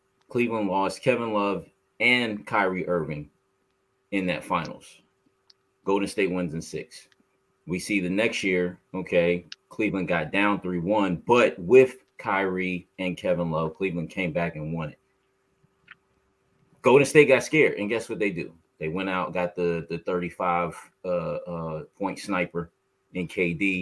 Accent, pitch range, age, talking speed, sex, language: American, 90-100 Hz, 30-49, 145 wpm, male, English